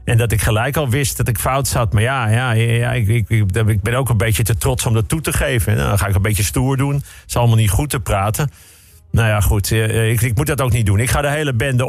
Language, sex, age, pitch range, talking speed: Dutch, male, 50-69, 110-140 Hz, 290 wpm